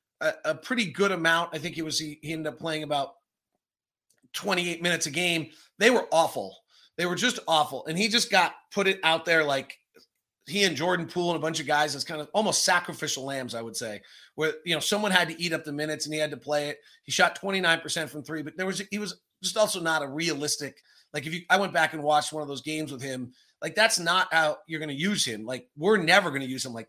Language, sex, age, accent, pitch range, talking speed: English, male, 30-49, American, 150-180 Hz, 255 wpm